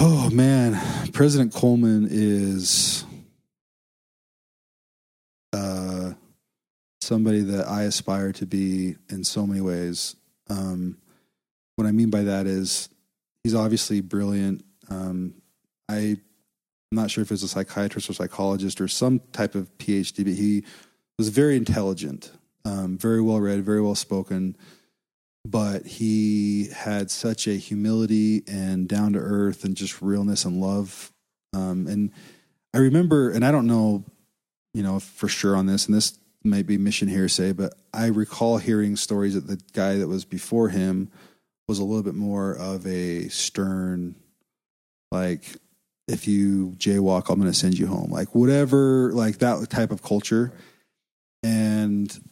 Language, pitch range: English, 95-110 Hz